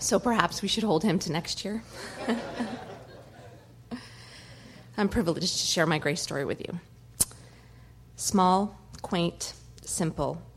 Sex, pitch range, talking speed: female, 150-185 Hz, 120 wpm